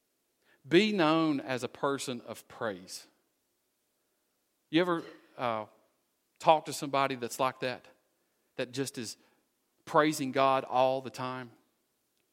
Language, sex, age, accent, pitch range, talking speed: English, male, 40-59, American, 120-150 Hz, 115 wpm